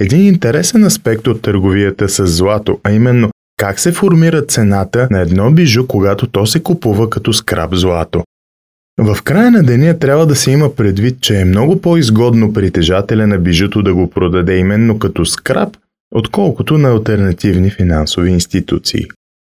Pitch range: 95-125 Hz